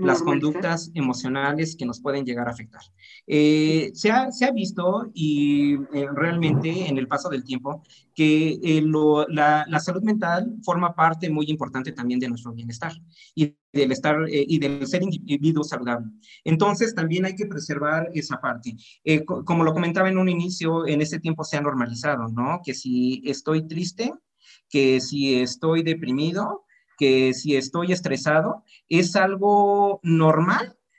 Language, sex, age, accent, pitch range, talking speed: Spanish, male, 40-59, Mexican, 135-170 Hz, 165 wpm